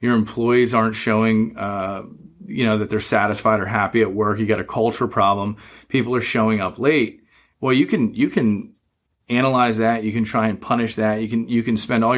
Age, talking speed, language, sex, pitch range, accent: 30-49, 210 wpm, English, male, 110-125 Hz, American